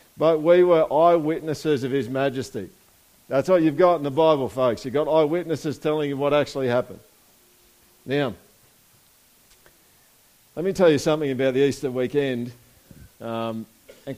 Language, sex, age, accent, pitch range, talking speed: English, male, 50-69, Australian, 110-155 Hz, 150 wpm